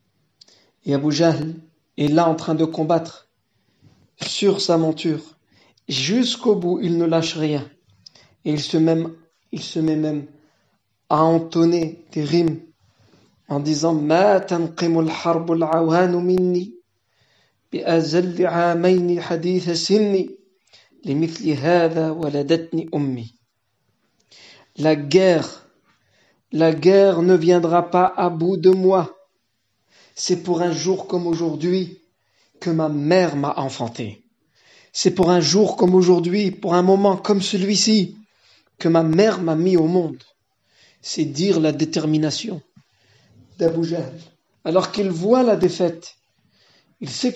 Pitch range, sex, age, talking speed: 155-185 Hz, male, 50-69, 110 wpm